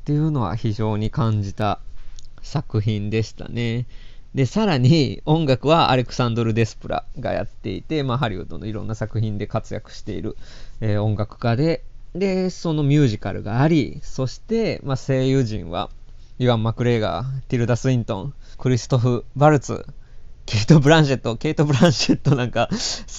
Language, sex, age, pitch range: Japanese, male, 20-39, 110-145 Hz